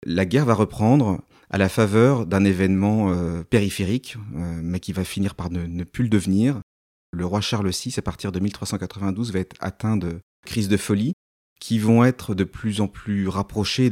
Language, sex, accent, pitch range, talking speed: French, male, French, 90-110 Hz, 195 wpm